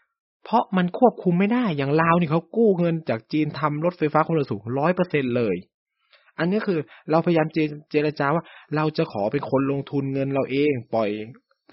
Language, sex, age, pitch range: Thai, male, 20-39, 125-165 Hz